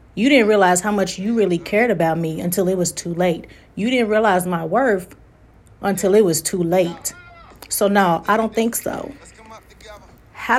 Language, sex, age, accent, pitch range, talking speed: English, female, 30-49, American, 175-215 Hz, 180 wpm